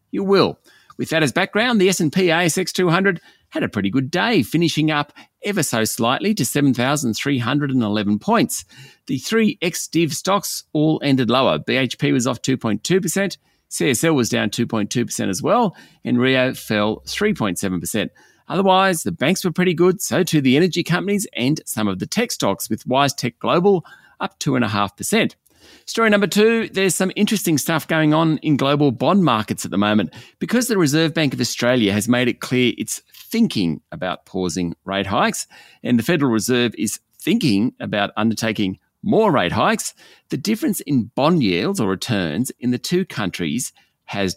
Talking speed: 165 wpm